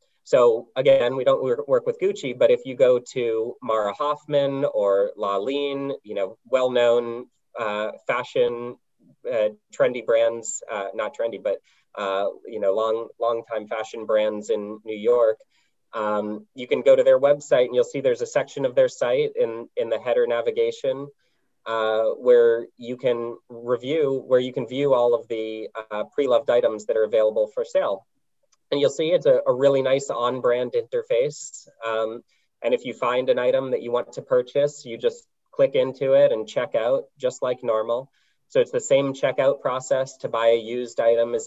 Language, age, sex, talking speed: English, 20-39, male, 180 wpm